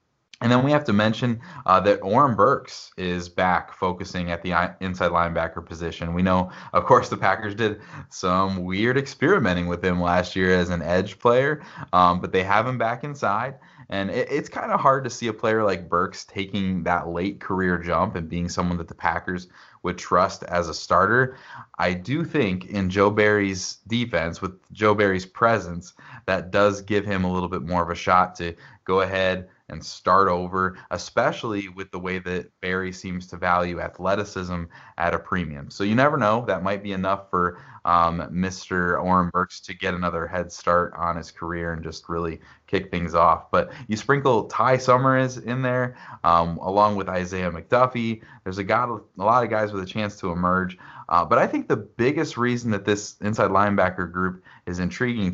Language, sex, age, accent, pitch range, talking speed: English, male, 20-39, American, 90-105 Hz, 190 wpm